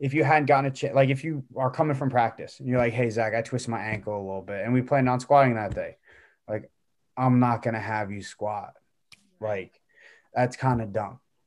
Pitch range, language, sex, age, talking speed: 120-140 Hz, English, male, 20-39, 235 wpm